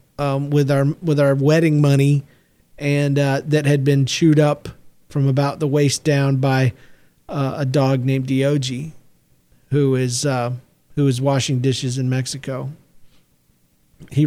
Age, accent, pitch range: 40-59, American, 130-160 Hz